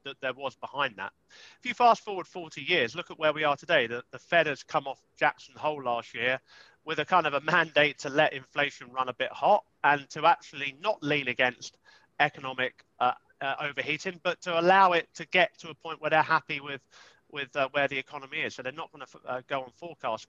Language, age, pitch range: English, 30-49, 135-170 Hz